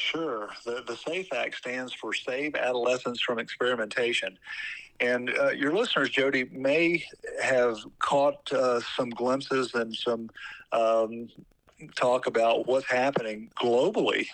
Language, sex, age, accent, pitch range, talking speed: English, male, 50-69, American, 115-135 Hz, 125 wpm